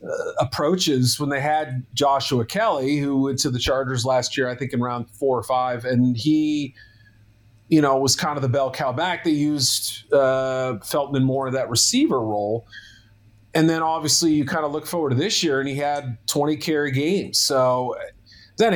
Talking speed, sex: 190 wpm, male